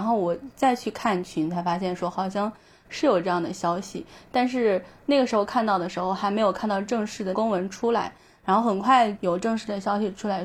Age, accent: 20-39, native